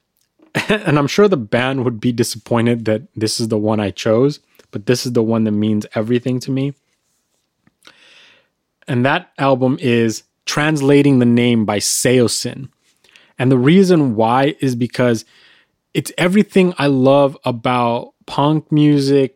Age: 20-39